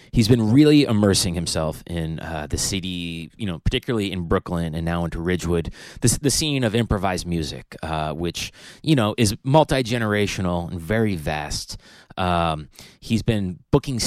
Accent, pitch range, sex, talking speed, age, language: American, 90-125 Hz, male, 155 wpm, 30-49, English